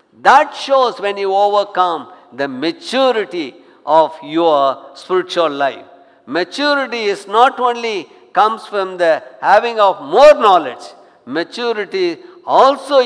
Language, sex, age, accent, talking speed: English, male, 60-79, Indian, 110 wpm